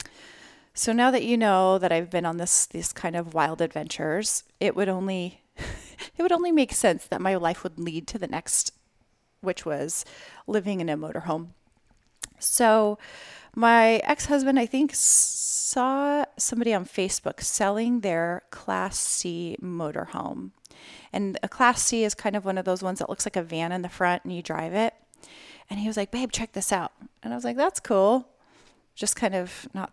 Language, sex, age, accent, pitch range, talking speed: English, female, 30-49, American, 180-250 Hz, 185 wpm